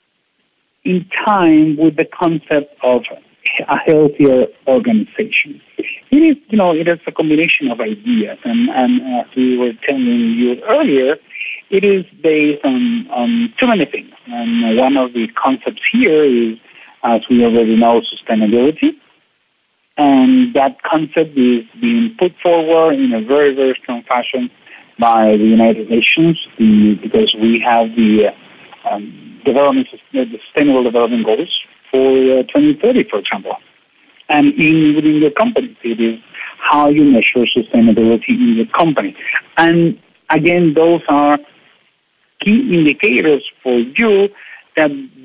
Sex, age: male, 50-69